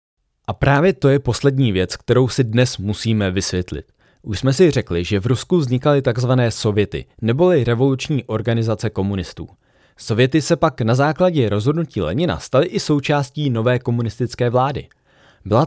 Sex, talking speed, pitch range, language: male, 150 wpm, 105-145 Hz, Czech